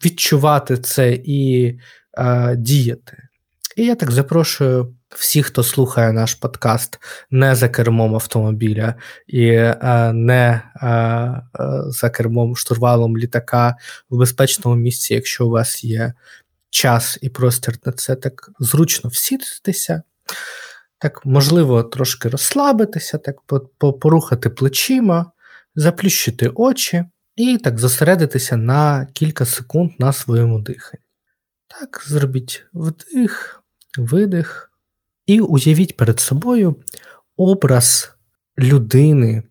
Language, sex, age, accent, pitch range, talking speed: Ukrainian, male, 20-39, native, 120-155 Hz, 105 wpm